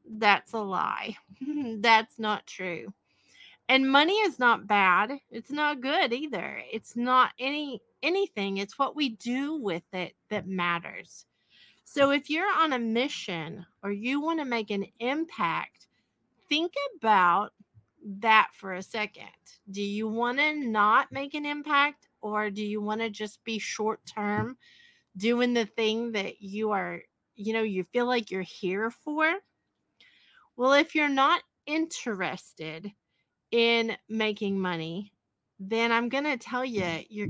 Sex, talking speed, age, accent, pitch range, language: female, 150 wpm, 30-49, American, 200-270 Hz, English